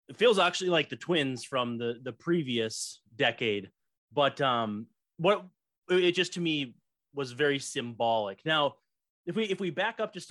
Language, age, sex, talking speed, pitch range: English, 30-49, male, 170 wpm, 120-170 Hz